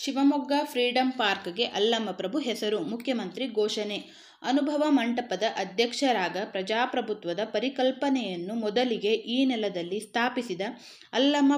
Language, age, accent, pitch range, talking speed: Kannada, 20-39, native, 215-260 Hz, 95 wpm